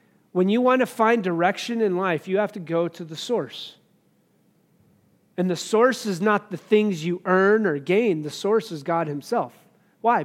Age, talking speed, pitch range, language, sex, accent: 40-59, 185 wpm, 180-225 Hz, English, male, American